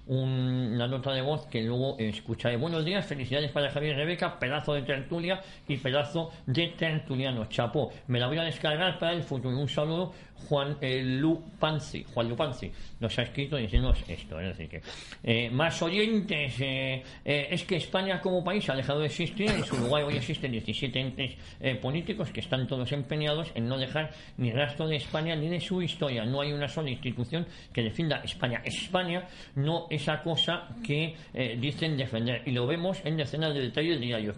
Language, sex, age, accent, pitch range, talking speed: Spanish, male, 50-69, Spanish, 125-155 Hz, 185 wpm